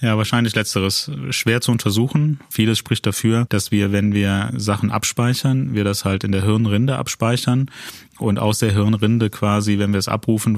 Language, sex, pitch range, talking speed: German, male, 105-115 Hz, 175 wpm